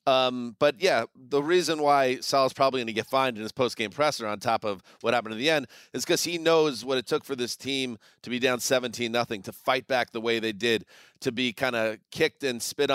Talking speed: 245 wpm